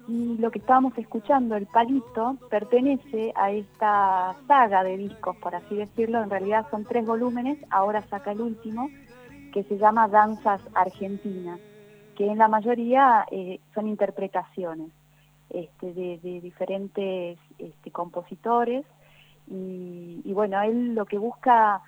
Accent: Argentinian